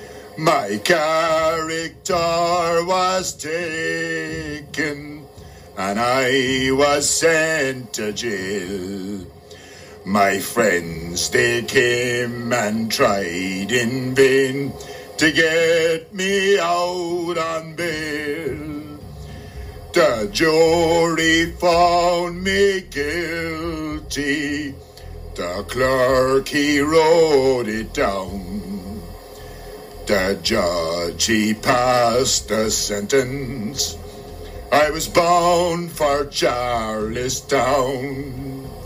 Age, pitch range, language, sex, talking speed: 60-79, 105-165 Hz, English, male, 70 wpm